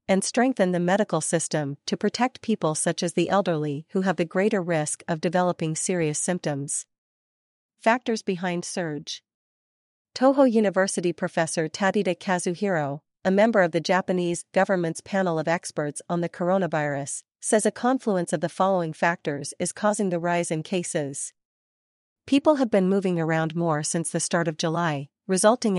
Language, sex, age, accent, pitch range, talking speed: English, female, 40-59, American, 165-200 Hz, 155 wpm